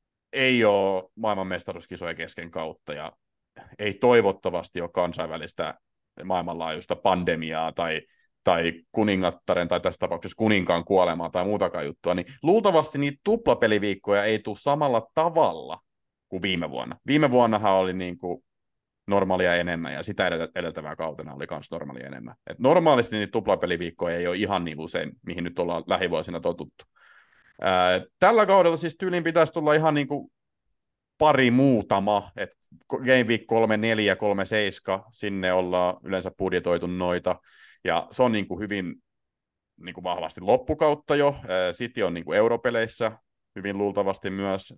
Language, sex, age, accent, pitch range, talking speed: Finnish, male, 30-49, native, 90-115 Hz, 135 wpm